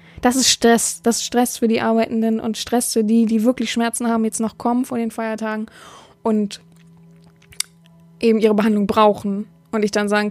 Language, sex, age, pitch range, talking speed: German, female, 20-39, 215-255 Hz, 185 wpm